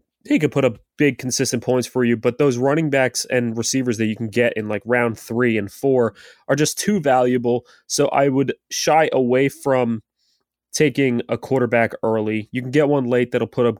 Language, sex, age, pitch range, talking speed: English, male, 20-39, 115-135 Hz, 205 wpm